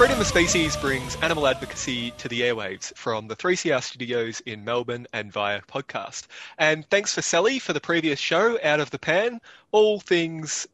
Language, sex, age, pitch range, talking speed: English, male, 20-39, 120-155 Hz, 175 wpm